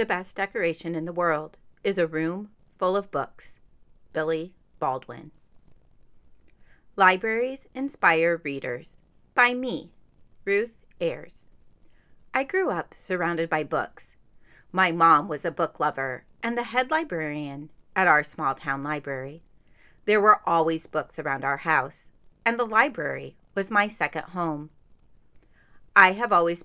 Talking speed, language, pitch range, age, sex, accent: 135 wpm, English, 155-225 Hz, 30-49, female, American